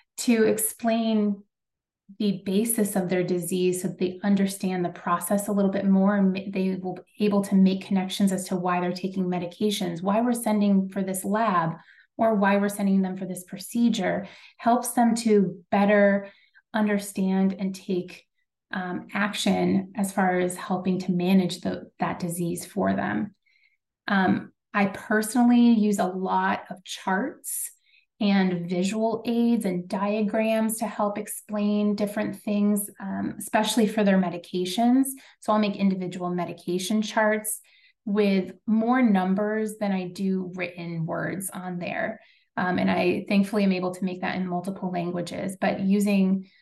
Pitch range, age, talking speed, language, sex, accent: 185-215 Hz, 30-49, 150 wpm, English, female, American